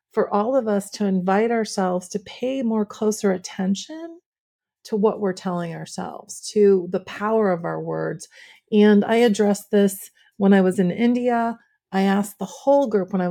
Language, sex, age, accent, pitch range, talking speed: English, female, 40-59, American, 190-235 Hz, 175 wpm